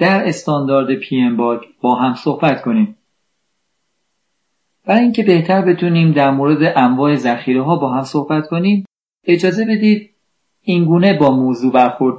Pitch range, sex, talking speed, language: 130-185 Hz, male, 130 wpm, Persian